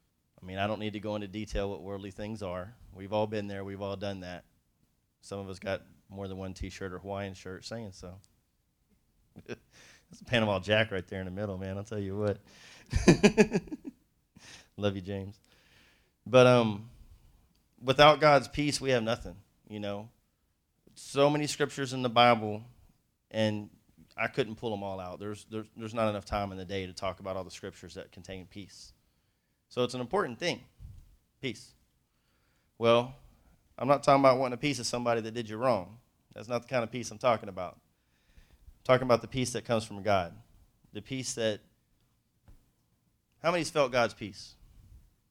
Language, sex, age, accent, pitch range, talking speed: English, male, 30-49, American, 95-120 Hz, 185 wpm